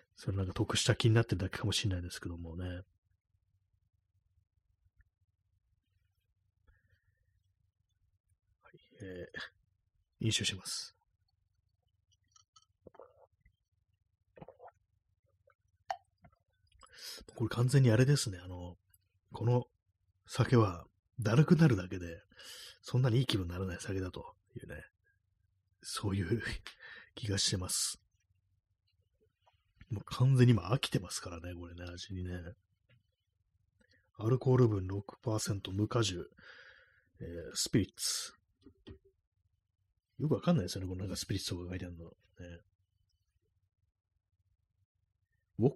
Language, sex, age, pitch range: Japanese, male, 30-49, 95-105 Hz